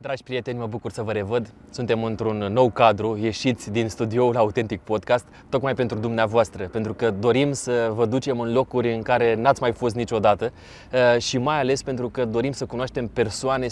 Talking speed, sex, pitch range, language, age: 185 wpm, male, 115-135 Hz, Romanian, 20-39